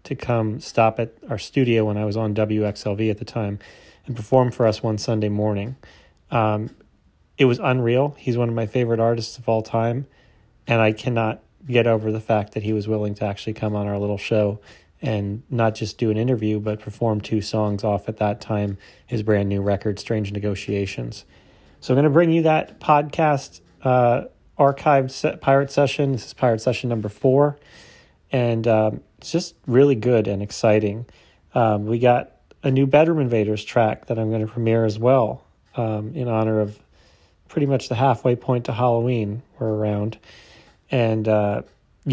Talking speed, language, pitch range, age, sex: 185 wpm, English, 110-125 Hz, 30-49, male